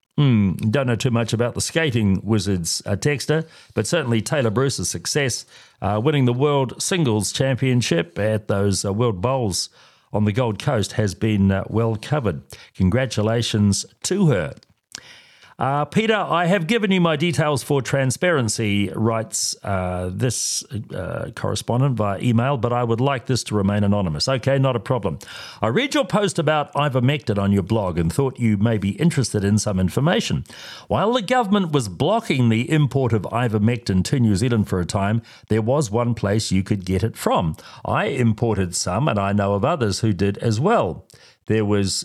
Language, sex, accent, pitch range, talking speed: English, male, Australian, 105-140 Hz, 175 wpm